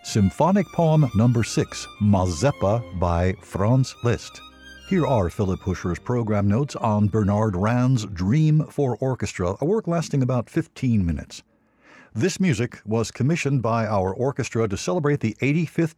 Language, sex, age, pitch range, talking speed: English, male, 60-79, 105-140 Hz, 140 wpm